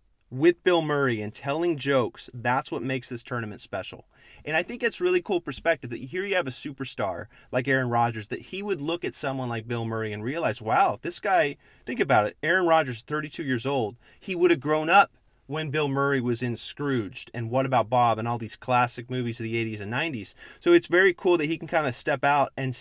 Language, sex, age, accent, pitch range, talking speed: English, male, 30-49, American, 120-150 Hz, 230 wpm